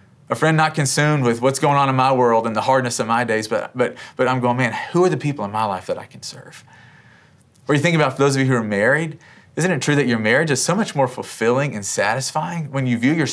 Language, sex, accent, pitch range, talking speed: English, male, American, 115-135 Hz, 275 wpm